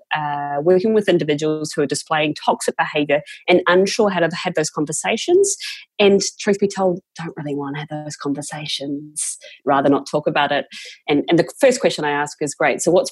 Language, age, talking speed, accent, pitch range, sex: English, 30-49, 195 wpm, Australian, 145-175 Hz, female